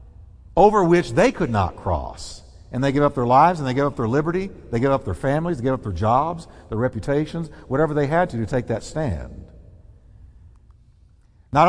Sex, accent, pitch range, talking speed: male, American, 100-155 Hz, 205 wpm